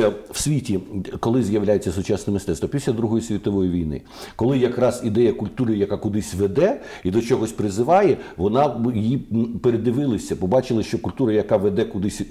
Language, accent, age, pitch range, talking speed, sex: Ukrainian, native, 60-79, 105-130 Hz, 145 wpm, male